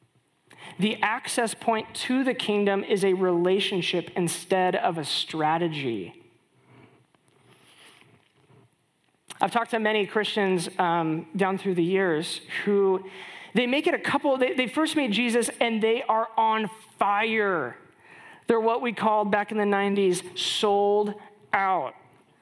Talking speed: 130 wpm